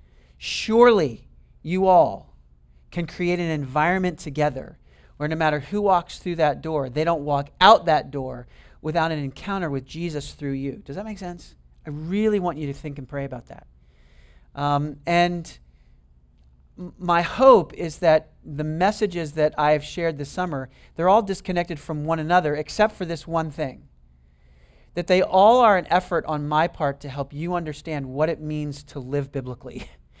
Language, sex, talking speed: English, male, 175 wpm